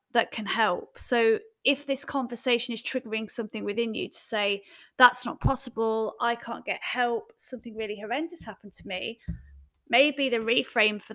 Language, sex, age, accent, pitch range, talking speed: English, female, 30-49, British, 205-255 Hz, 165 wpm